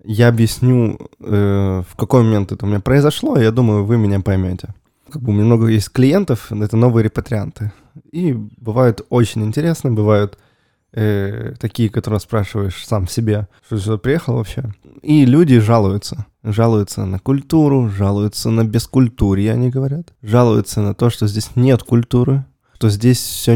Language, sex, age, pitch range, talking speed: Russian, male, 20-39, 105-125 Hz, 160 wpm